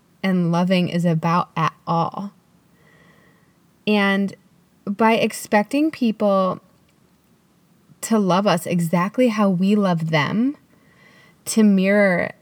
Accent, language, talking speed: American, English, 95 wpm